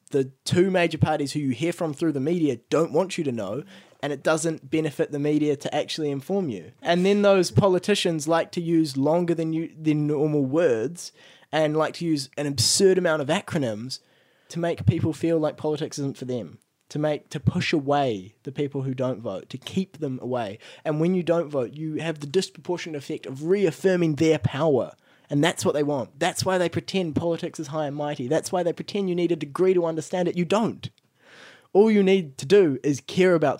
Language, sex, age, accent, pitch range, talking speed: English, male, 20-39, Australian, 145-175 Hz, 215 wpm